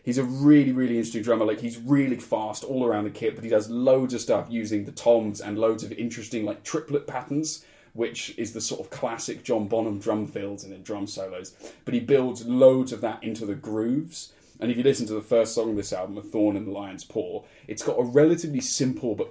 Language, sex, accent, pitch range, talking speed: English, male, British, 110-130 Hz, 235 wpm